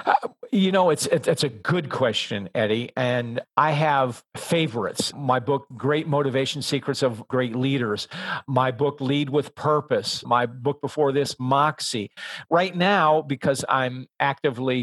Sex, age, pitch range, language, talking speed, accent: male, 50-69, 130-170 Hz, English, 150 wpm, American